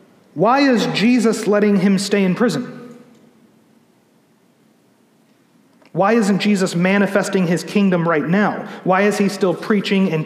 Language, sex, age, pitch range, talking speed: English, male, 30-49, 170-210 Hz, 130 wpm